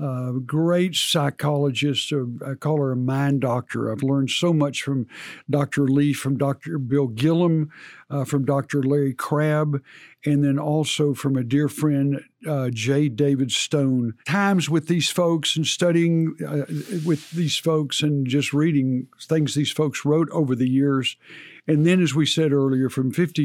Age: 60-79